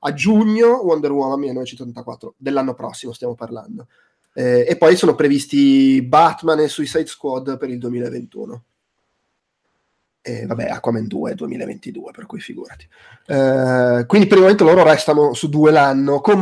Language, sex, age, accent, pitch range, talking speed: Italian, male, 20-39, native, 125-170 Hz, 150 wpm